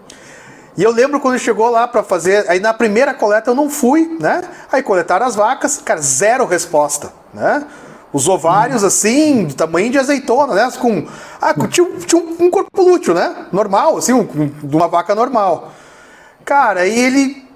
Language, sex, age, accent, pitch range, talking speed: Portuguese, male, 30-49, Brazilian, 190-280 Hz, 180 wpm